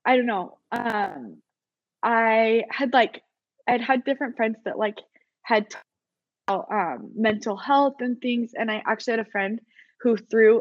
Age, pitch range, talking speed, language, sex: 20-39, 210-255 Hz, 165 wpm, English, female